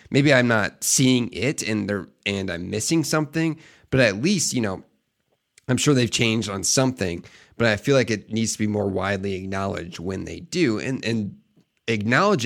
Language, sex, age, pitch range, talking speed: English, male, 30-49, 100-125 Hz, 190 wpm